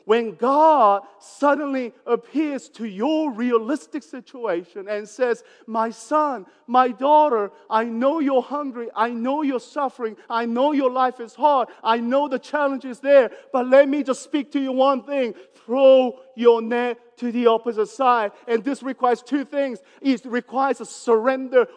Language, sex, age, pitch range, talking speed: English, male, 40-59, 230-285 Hz, 165 wpm